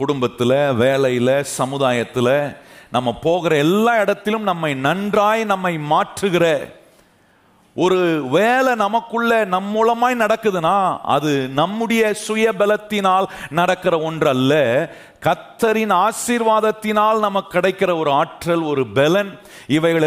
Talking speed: 95 wpm